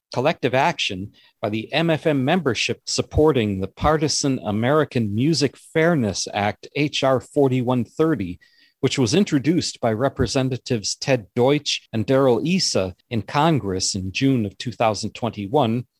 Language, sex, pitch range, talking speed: English, male, 115-155 Hz, 115 wpm